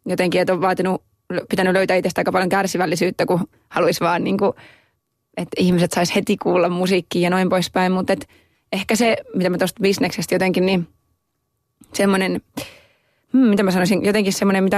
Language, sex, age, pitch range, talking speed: Finnish, female, 20-39, 180-195 Hz, 165 wpm